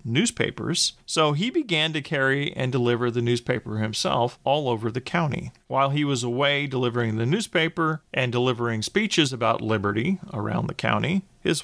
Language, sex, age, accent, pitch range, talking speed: English, male, 40-59, American, 115-145 Hz, 160 wpm